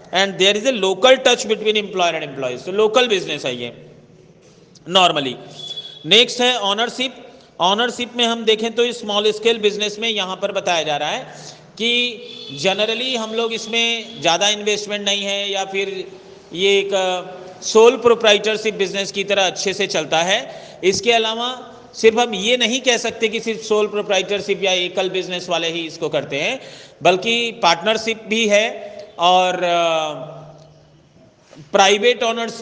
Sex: male